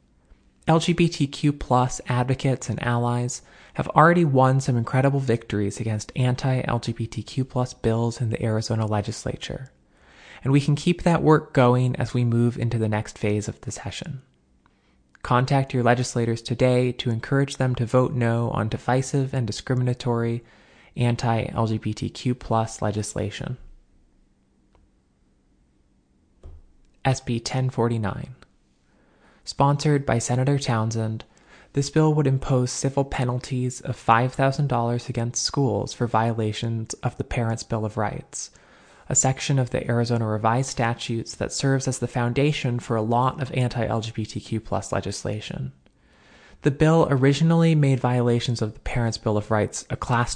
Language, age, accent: English, 20-39, American